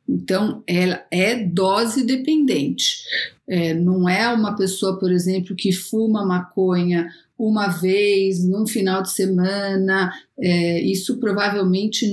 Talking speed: 110 wpm